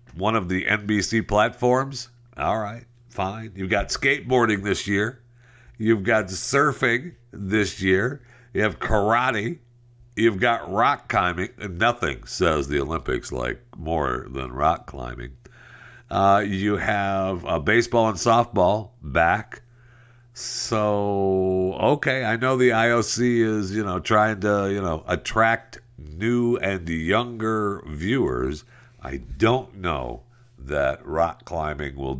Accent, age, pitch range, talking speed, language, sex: American, 60-79, 85-120 Hz, 125 wpm, English, male